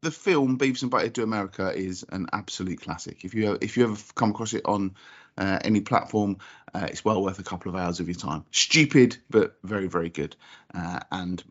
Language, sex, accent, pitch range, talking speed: English, male, British, 105-140 Hz, 220 wpm